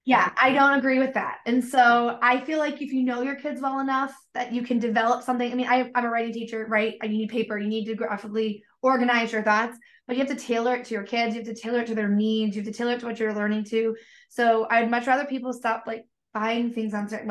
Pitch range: 215-250 Hz